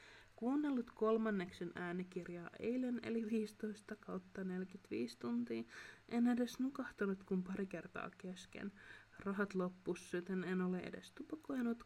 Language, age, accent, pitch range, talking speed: Finnish, 30-49, native, 175-215 Hz, 115 wpm